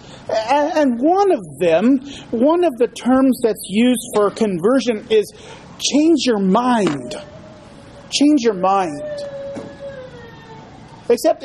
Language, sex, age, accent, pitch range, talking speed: English, male, 40-59, American, 220-280 Hz, 105 wpm